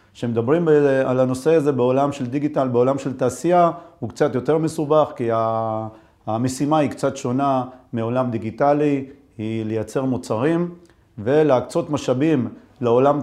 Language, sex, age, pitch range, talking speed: Hebrew, male, 40-59, 120-150 Hz, 125 wpm